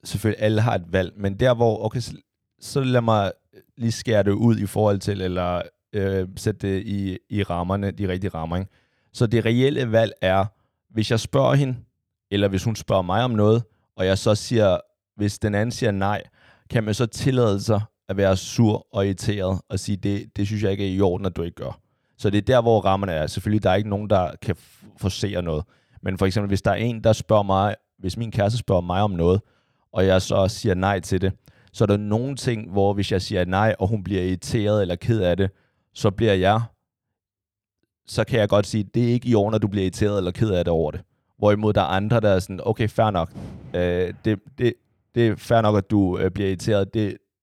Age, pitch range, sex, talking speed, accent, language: 30-49, 95-115 Hz, male, 235 wpm, native, Danish